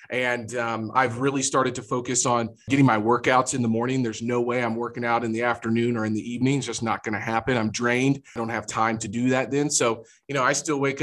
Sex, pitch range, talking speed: male, 115-130 Hz, 265 wpm